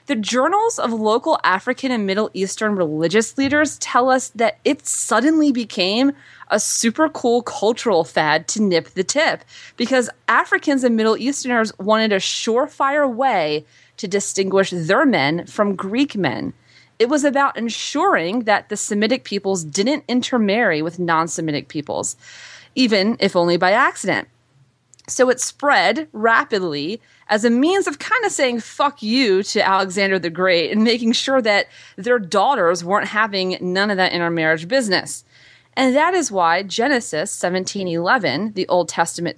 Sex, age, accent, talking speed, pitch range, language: female, 20-39, American, 150 wpm, 175-250 Hz, English